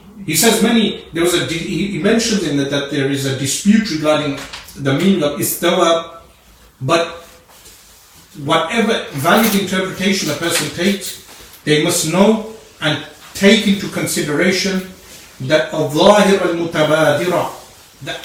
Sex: male